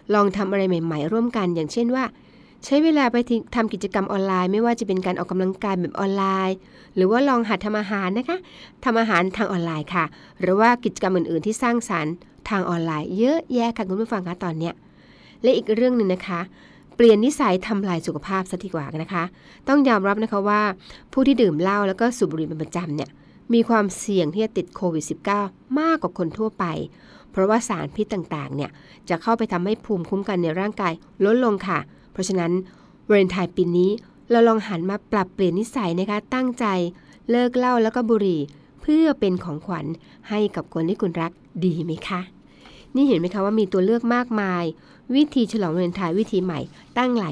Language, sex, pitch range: Thai, female, 175-225 Hz